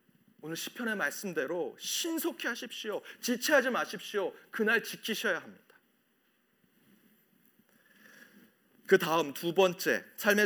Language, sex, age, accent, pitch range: Korean, male, 40-59, native, 155-225 Hz